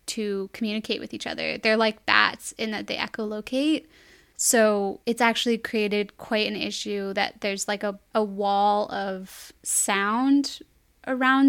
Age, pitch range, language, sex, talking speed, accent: 10-29, 205-240 Hz, English, female, 145 wpm, American